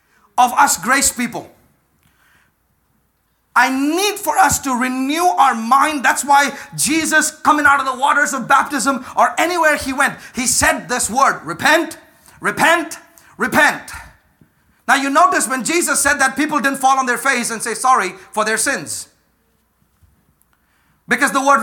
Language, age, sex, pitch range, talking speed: English, 40-59, male, 265-330 Hz, 155 wpm